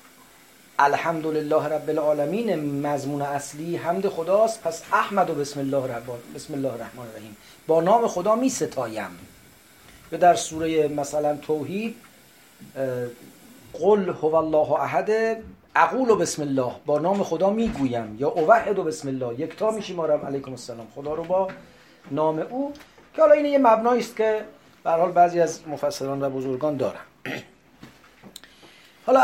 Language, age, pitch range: English, 40-59, 140-205 Hz